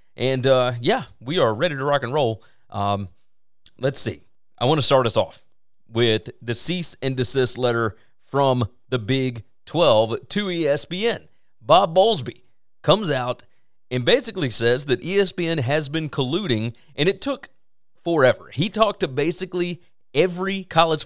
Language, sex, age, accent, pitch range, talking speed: English, male, 30-49, American, 120-170 Hz, 150 wpm